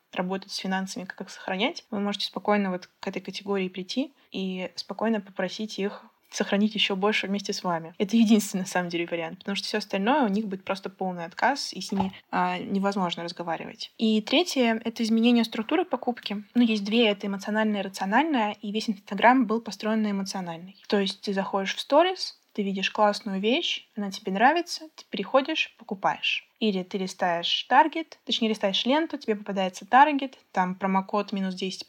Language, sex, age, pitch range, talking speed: Russian, female, 20-39, 195-235 Hz, 180 wpm